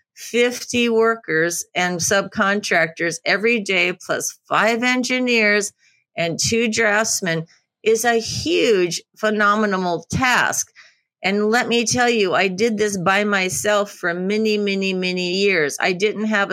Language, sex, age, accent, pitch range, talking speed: English, female, 50-69, American, 170-215 Hz, 125 wpm